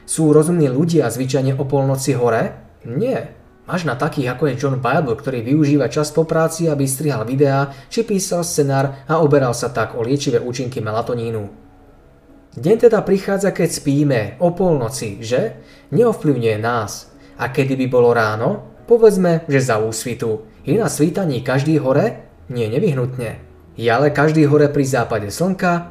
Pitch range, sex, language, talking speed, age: 120-155 Hz, male, Slovak, 155 wpm, 20-39